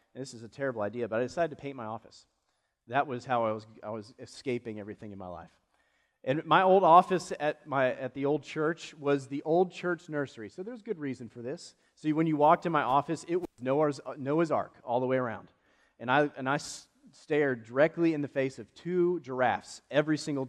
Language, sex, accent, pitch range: English, male, American, 120-160 Hz